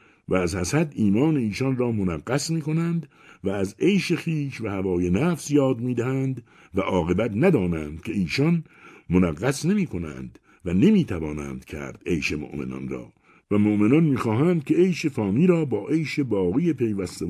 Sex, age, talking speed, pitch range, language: male, 60-79, 155 wpm, 95-155 Hz, Persian